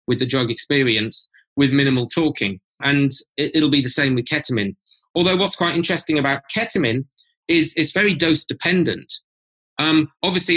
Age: 30-49